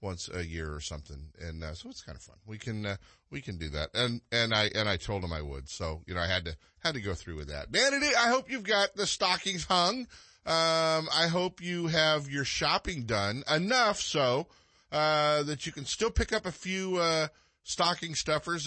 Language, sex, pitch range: English, male, 100-160 Hz